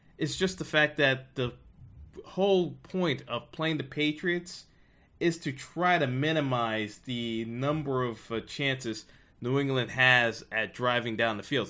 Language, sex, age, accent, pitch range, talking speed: English, male, 20-39, American, 115-155 Hz, 155 wpm